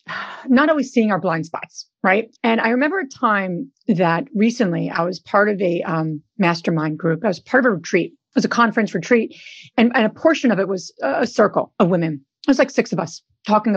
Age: 40-59